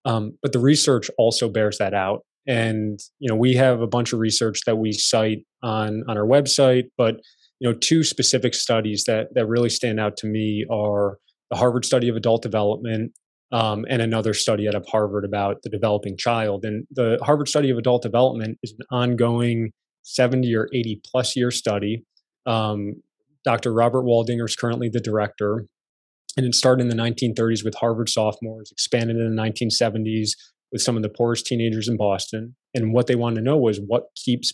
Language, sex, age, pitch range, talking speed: English, male, 20-39, 110-125 Hz, 190 wpm